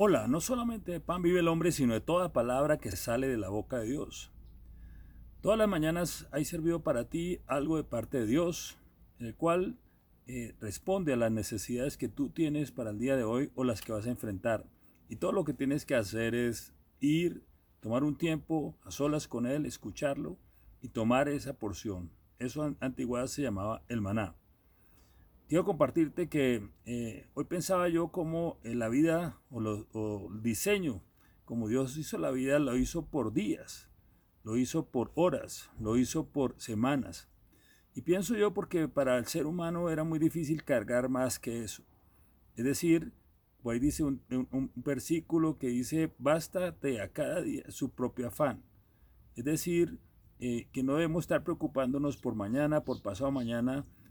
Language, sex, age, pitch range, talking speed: Spanish, male, 40-59, 115-160 Hz, 170 wpm